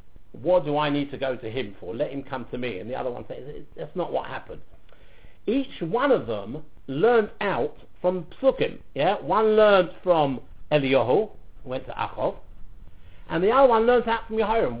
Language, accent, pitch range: English, British, 150-220 Hz